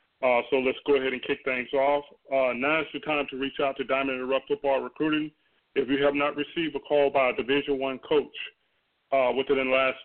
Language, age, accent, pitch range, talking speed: English, 40-59, American, 130-145 Hz, 225 wpm